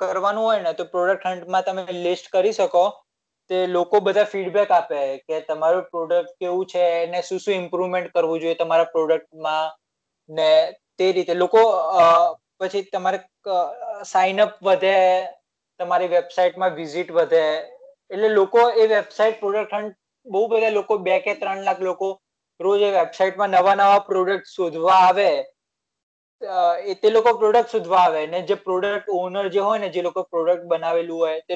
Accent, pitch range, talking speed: native, 165-195 Hz, 95 wpm